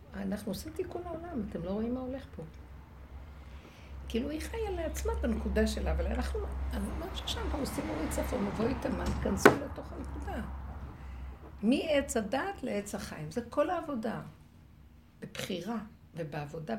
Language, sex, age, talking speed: Hebrew, female, 60-79, 140 wpm